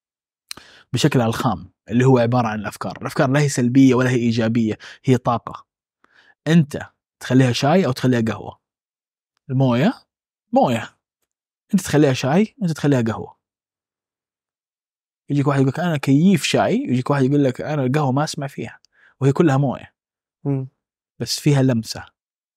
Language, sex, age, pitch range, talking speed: Arabic, male, 20-39, 120-150 Hz, 135 wpm